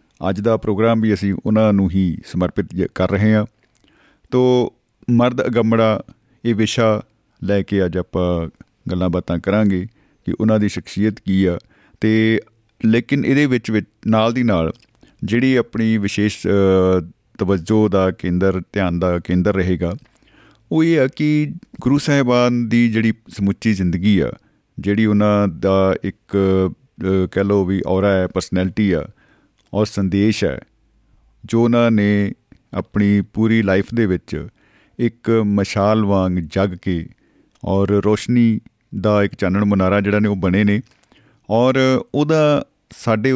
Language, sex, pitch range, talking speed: Punjabi, male, 95-115 Hz, 110 wpm